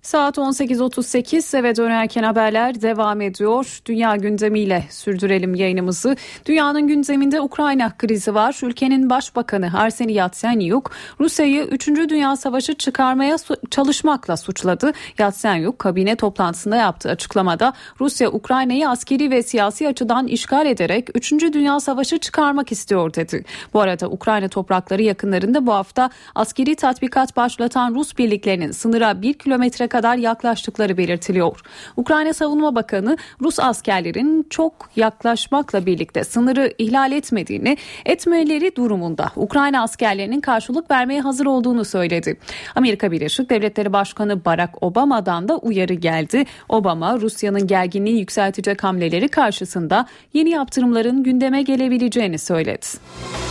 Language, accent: Turkish, native